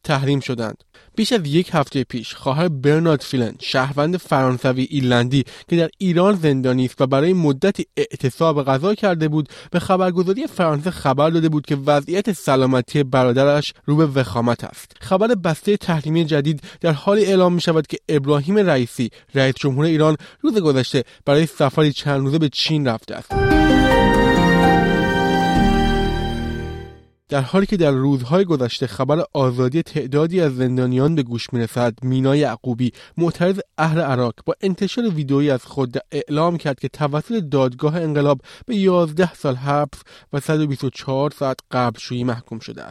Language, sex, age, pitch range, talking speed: Persian, male, 20-39, 130-165 Hz, 145 wpm